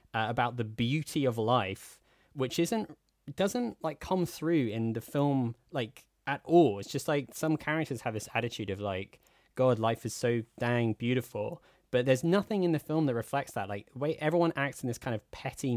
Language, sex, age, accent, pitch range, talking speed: English, male, 20-39, British, 115-155 Hz, 200 wpm